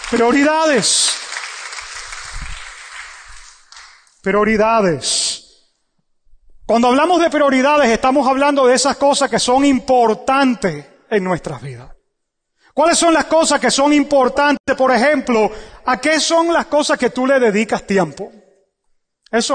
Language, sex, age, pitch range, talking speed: English, male, 30-49, 215-275 Hz, 115 wpm